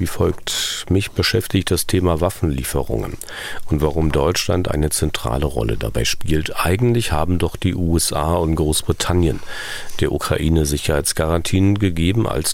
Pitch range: 80-95 Hz